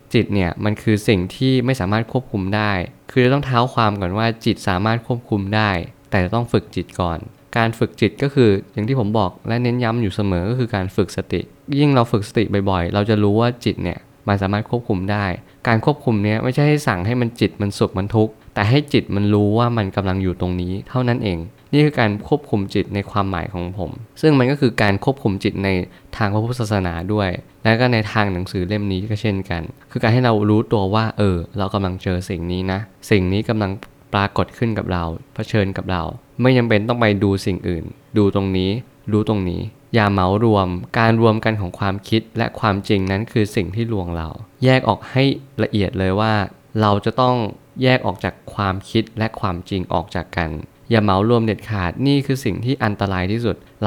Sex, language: male, Thai